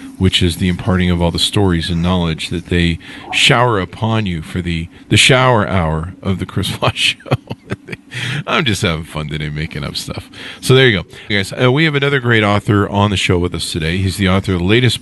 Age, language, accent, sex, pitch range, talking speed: 50-69, English, American, male, 95-130 Hz, 230 wpm